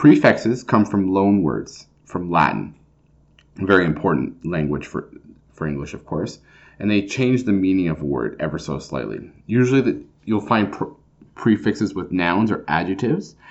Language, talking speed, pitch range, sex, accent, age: English, 165 wpm, 90-115 Hz, male, American, 30-49